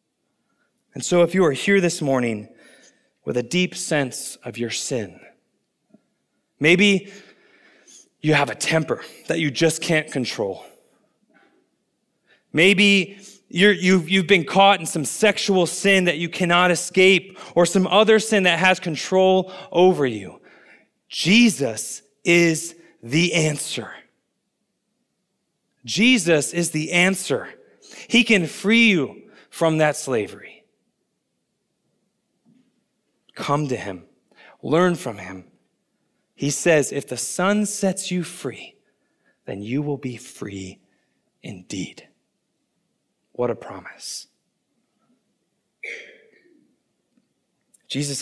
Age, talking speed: 30-49, 110 wpm